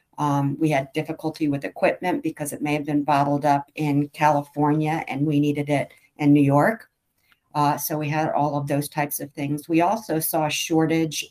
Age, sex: 50-69, female